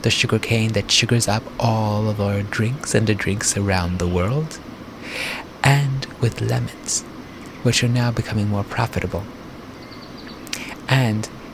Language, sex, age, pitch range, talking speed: English, male, 30-49, 100-120 Hz, 130 wpm